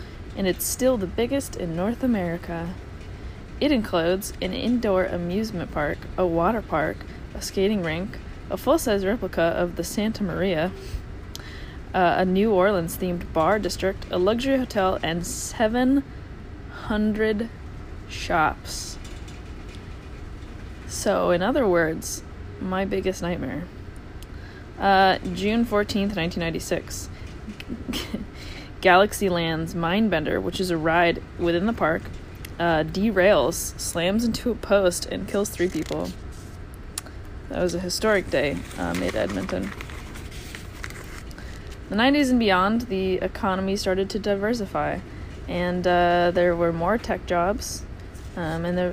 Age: 20-39